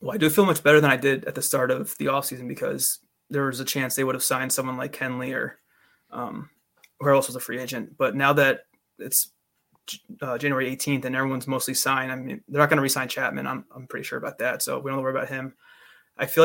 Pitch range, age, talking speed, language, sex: 130-145 Hz, 20-39, 250 wpm, English, male